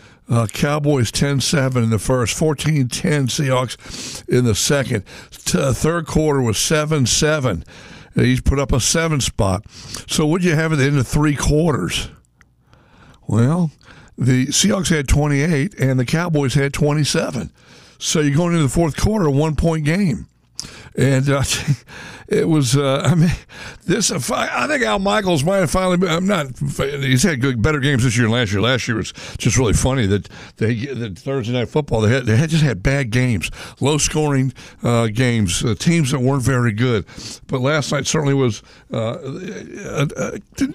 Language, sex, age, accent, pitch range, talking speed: English, male, 60-79, American, 120-155 Hz, 175 wpm